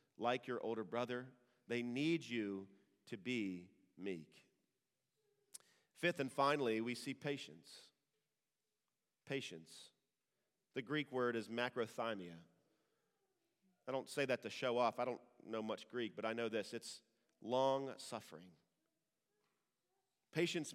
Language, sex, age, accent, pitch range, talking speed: English, male, 40-59, American, 120-150 Hz, 120 wpm